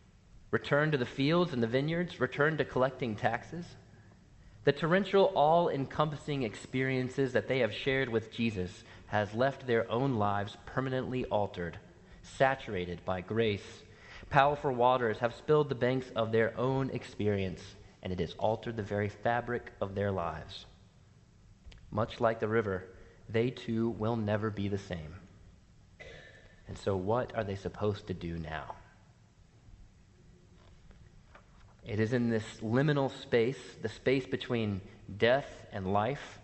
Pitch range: 100-130 Hz